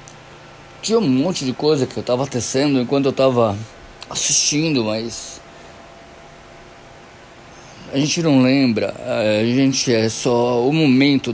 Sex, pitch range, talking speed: male, 115-145 Hz, 125 wpm